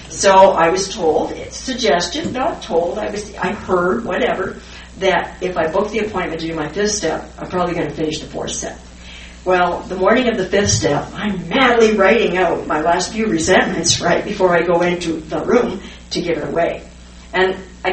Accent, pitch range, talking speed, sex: American, 155-195 Hz, 200 wpm, female